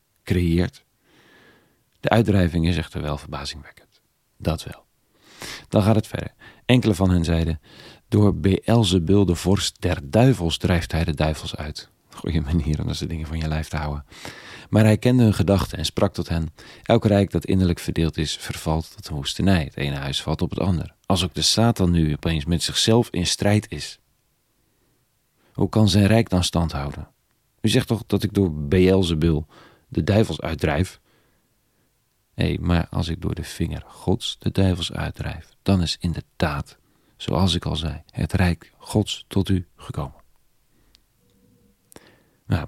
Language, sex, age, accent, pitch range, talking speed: Dutch, male, 40-59, Dutch, 80-100 Hz, 165 wpm